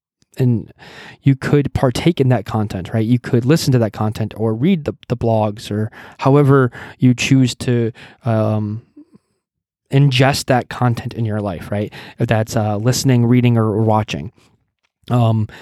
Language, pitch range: English, 115-130 Hz